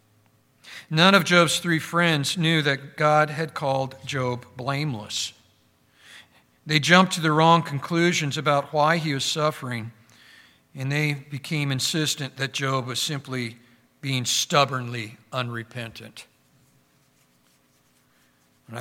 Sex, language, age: male, English, 50-69